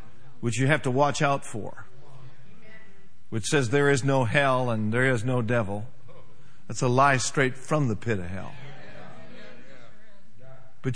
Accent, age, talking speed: American, 50-69, 155 wpm